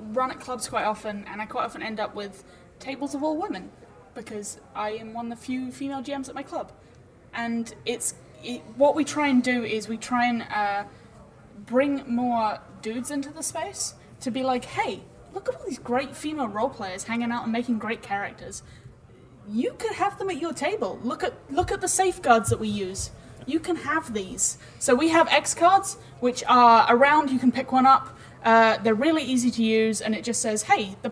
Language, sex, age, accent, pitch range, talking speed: English, female, 10-29, British, 215-270 Hz, 210 wpm